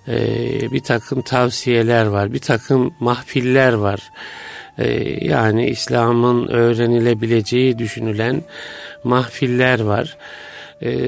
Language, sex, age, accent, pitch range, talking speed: Turkish, male, 50-69, native, 120-140 Hz, 90 wpm